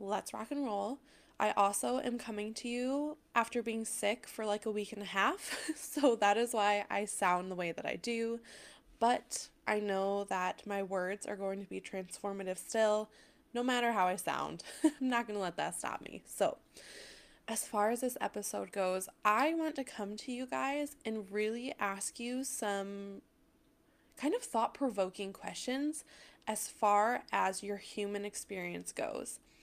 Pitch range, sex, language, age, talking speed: 195-245 Hz, female, English, 20-39, 170 wpm